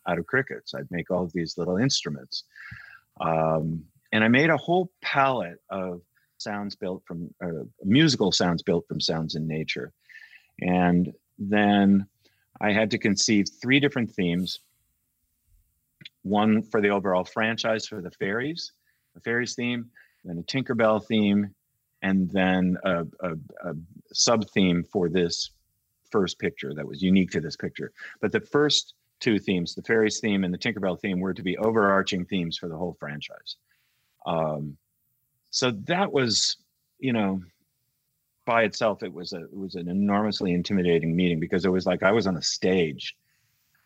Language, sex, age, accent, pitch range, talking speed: English, male, 40-59, American, 90-110 Hz, 160 wpm